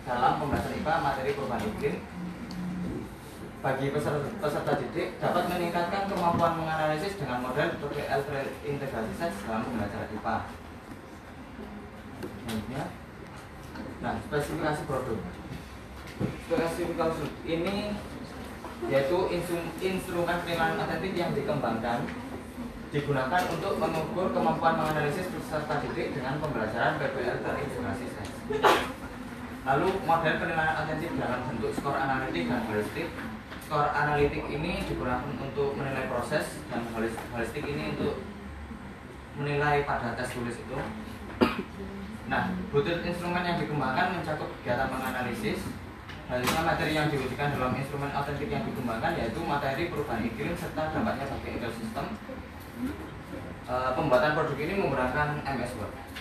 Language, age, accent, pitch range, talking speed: Indonesian, 20-39, native, 125-165 Hz, 110 wpm